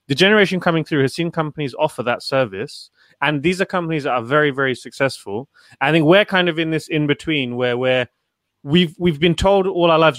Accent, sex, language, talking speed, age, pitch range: British, male, English, 220 wpm, 30-49, 125-155 Hz